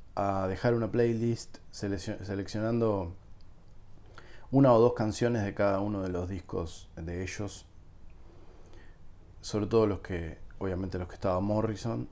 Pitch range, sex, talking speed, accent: 90-110 Hz, male, 130 wpm, Argentinian